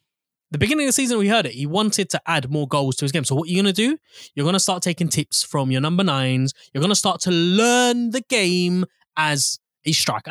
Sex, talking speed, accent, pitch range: male, 255 wpm, British, 140-195 Hz